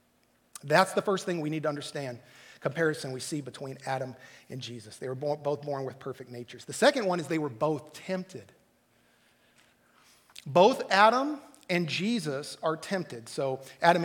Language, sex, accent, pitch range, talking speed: English, male, American, 130-185 Hz, 160 wpm